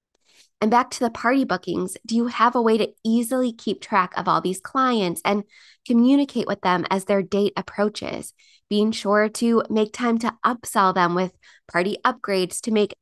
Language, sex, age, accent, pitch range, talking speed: English, female, 20-39, American, 185-225 Hz, 185 wpm